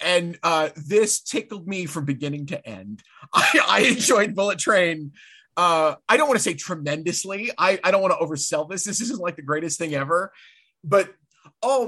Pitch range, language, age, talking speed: 145-185 Hz, English, 30-49, 185 wpm